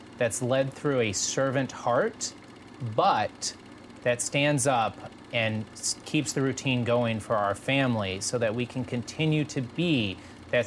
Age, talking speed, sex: 30-49, 145 wpm, male